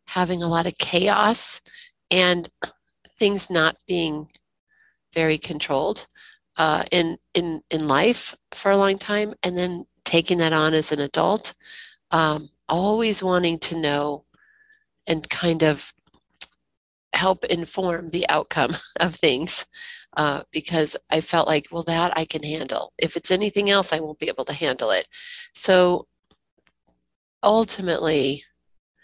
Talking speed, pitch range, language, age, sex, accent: 135 wpm, 155-205 Hz, English, 40-59, female, American